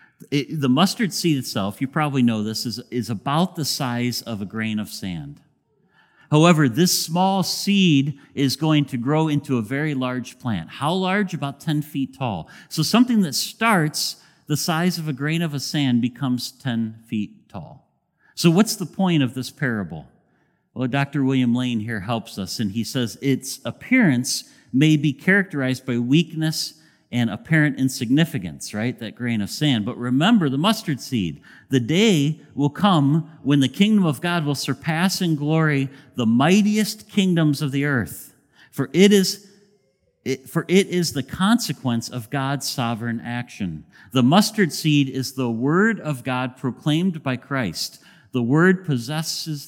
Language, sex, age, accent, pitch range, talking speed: English, male, 50-69, American, 125-165 Hz, 165 wpm